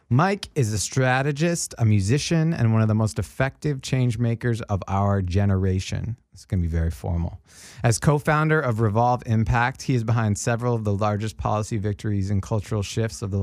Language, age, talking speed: English, 20-39, 190 wpm